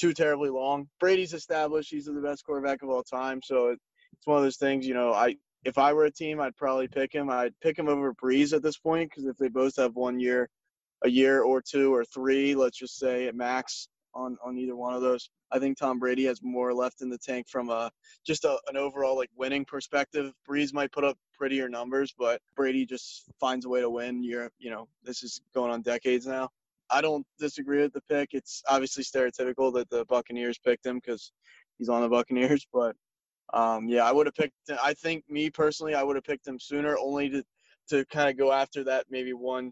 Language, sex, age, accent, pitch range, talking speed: English, male, 20-39, American, 125-145 Hz, 230 wpm